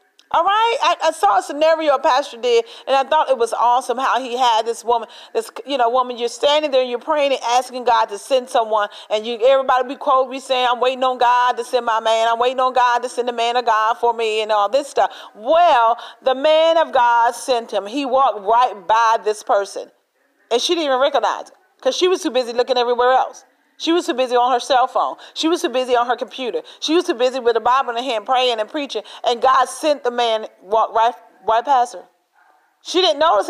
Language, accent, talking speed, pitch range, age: English, American, 245 wpm, 235-290 Hz, 40-59